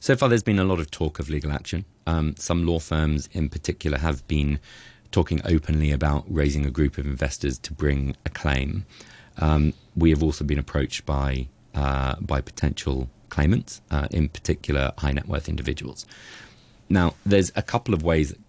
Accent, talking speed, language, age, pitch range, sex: British, 180 wpm, English, 30-49, 70-85 Hz, male